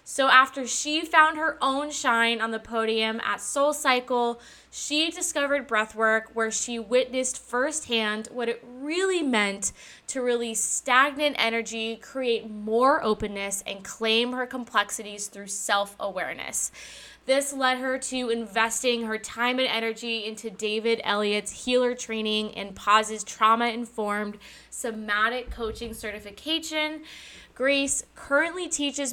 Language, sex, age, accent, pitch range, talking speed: English, female, 10-29, American, 215-260 Hz, 120 wpm